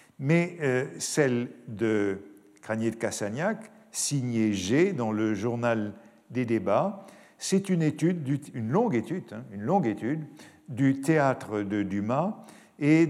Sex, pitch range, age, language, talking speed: male, 110-150 Hz, 50-69, French, 140 wpm